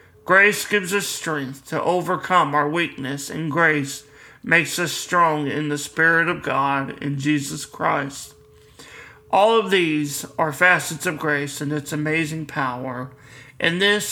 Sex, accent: male, American